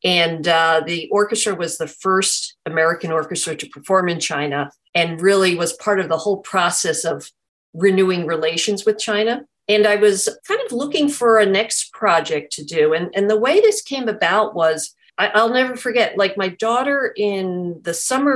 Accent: American